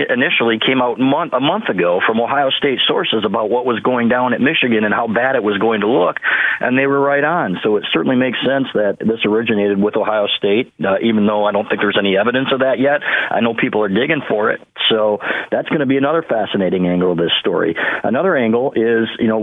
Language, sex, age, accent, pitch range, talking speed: English, male, 40-59, American, 105-130 Hz, 235 wpm